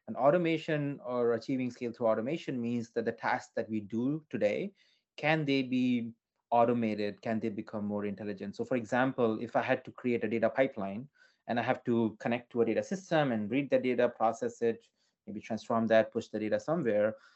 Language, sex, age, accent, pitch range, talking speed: English, male, 30-49, Indian, 115-135 Hz, 195 wpm